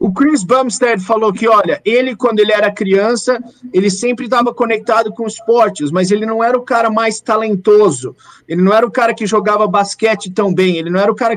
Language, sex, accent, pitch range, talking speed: Portuguese, male, Brazilian, 205-250 Hz, 210 wpm